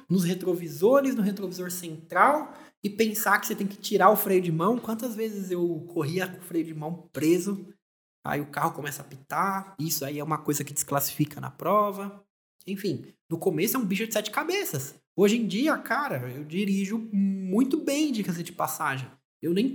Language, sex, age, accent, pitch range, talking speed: Portuguese, male, 20-39, Brazilian, 165-230 Hz, 190 wpm